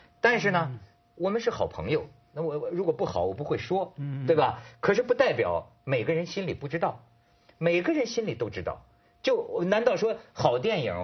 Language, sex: Chinese, male